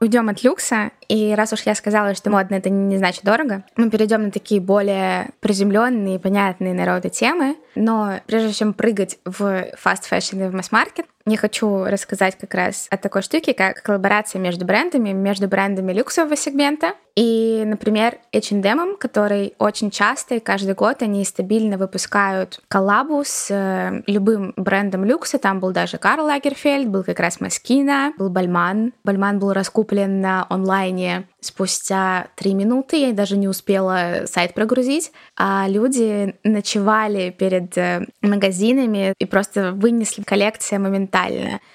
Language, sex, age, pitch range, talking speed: Russian, female, 20-39, 195-225 Hz, 145 wpm